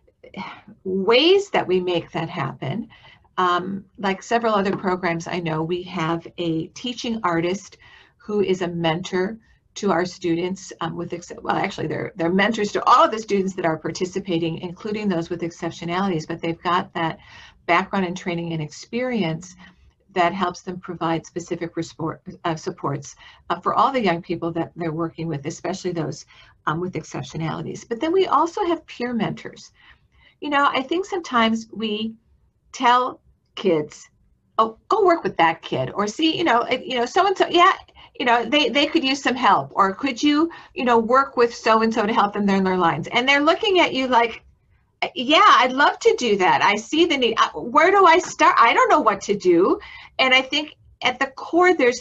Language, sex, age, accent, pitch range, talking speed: English, female, 50-69, American, 175-260 Hz, 185 wpm